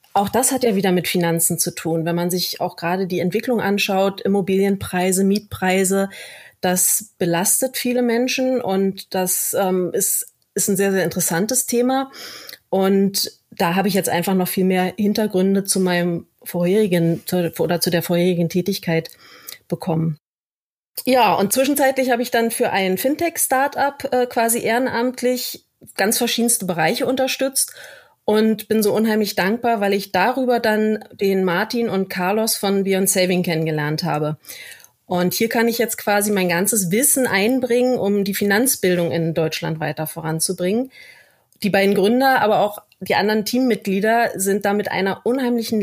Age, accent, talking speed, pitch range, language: 30-49, German, 155 wpm, 185-235 Hz, German